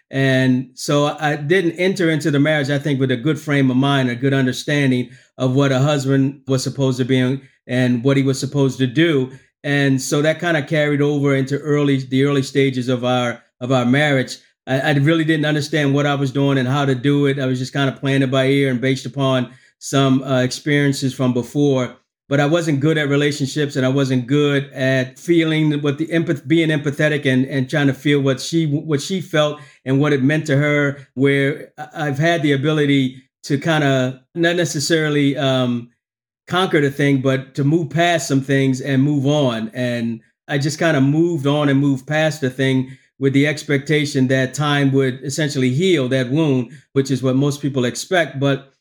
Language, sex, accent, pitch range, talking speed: English, male, American, 130-150 Hz, 205 wpm